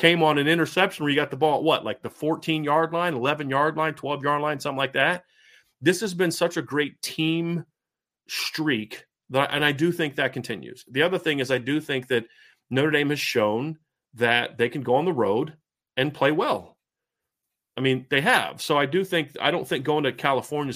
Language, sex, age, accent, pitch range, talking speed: English, male, 40-59, American, 125-155 Hz, 210 wpm